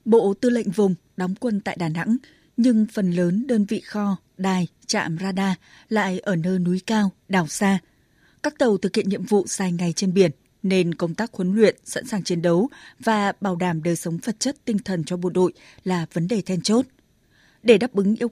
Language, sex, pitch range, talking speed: Vietnamese, female, 180-220 Hz, 215 wpm